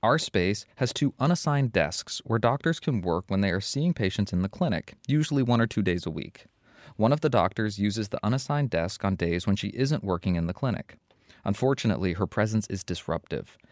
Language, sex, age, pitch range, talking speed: English, male, 20-39, 95-130 Hz, 205 wpm